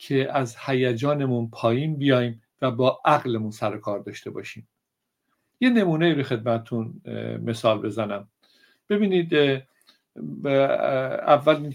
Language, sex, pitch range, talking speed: Persian, male, 115-145 Hz, 90 wpm